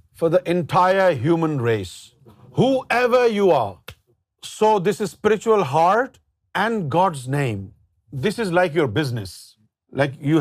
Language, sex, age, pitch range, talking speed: Urdu, male, 50-69, 120-175 Hz, 135 wpm